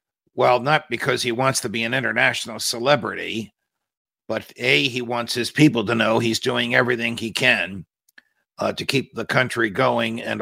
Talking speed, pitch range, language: 175 wpm, 110-135 Hz, English